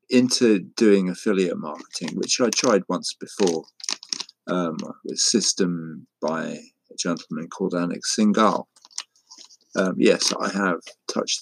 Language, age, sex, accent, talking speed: English, 50-69, male, British, 120 wpm